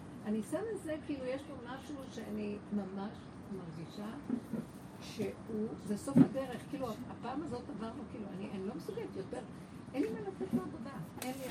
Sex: female